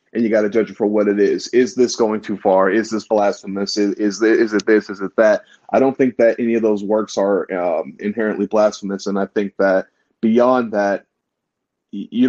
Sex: male